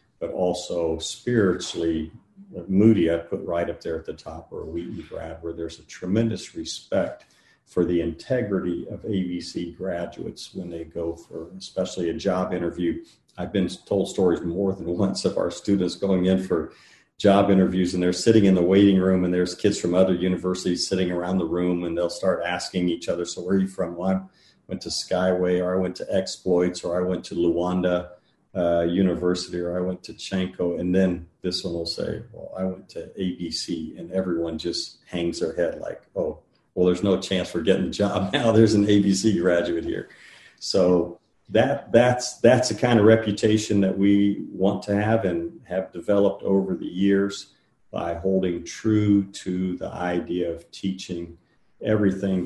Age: 40-59